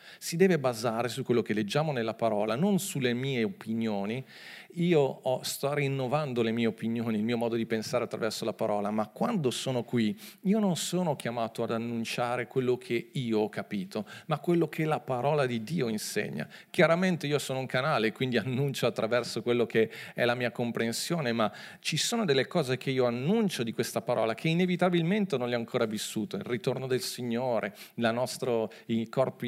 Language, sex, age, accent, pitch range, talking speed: Italian, male, 40-59, native, 115-150 Hz, 180 wpm